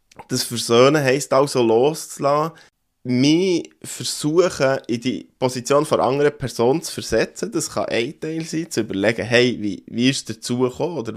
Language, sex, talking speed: German, male, 160 wpm